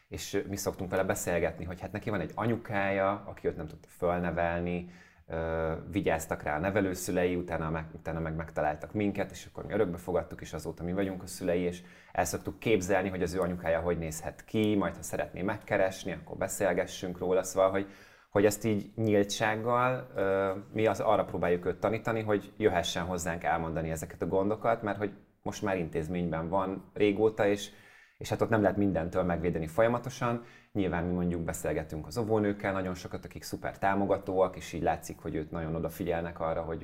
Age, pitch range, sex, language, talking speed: 30-49, 85-105 Hz, male, Hungarian, 180 wpm